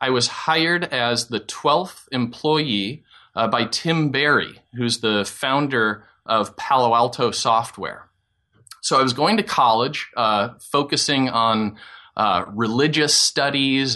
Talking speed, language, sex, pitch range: 130 wpm, English, male, 115-145 Hz